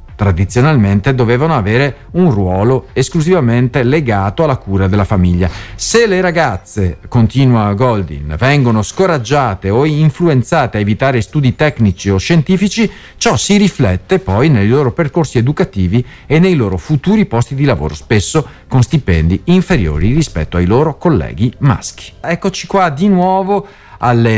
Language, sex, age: Italian, male, 40-59